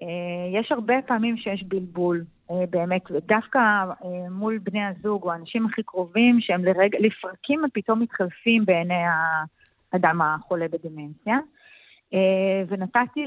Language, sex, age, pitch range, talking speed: Hebrew, female, 30-49, 180-235 Hz, 125 wpm